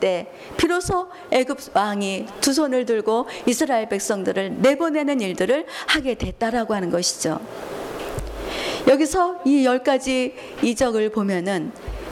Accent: native